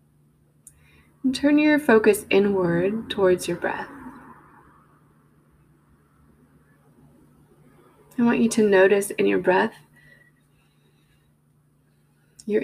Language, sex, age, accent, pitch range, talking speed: English, female, 20-39, American, 170-230 Hz, 80 wpm